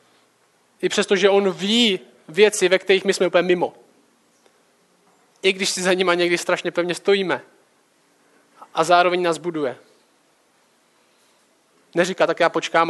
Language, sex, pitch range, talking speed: Czech, male, 165-195 Hz, 135 wpm